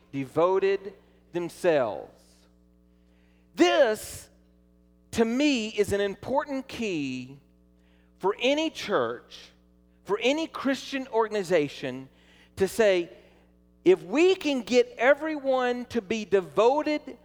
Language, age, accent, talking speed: English, 40-59, American, 90 wpm